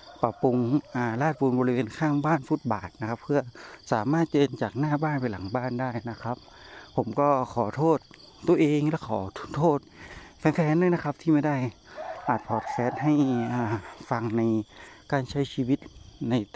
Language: Thai